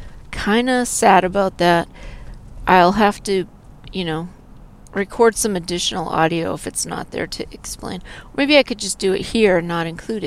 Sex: female